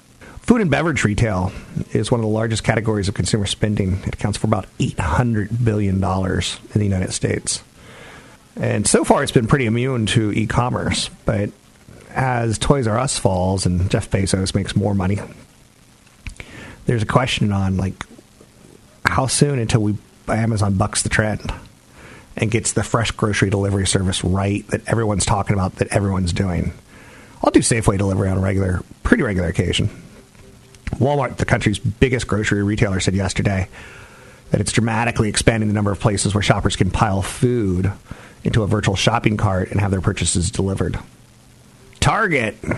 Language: English